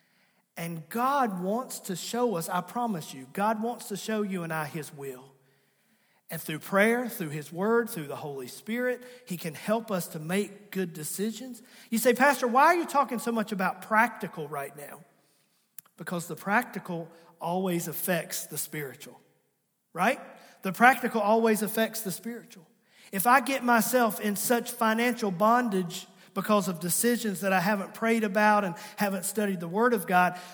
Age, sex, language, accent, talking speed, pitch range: 40-59, male, English, American, 170 wpm, 185-235 Hz